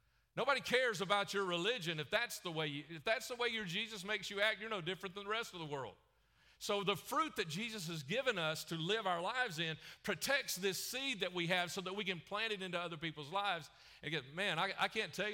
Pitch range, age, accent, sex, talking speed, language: 130-175 Hz, 40-59, American, male, 250 wpm, English